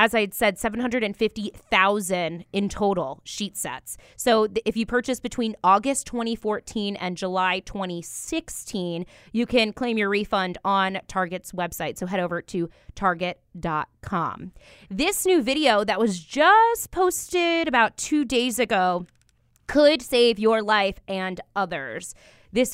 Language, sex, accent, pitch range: English, female, American, 185-240 Hz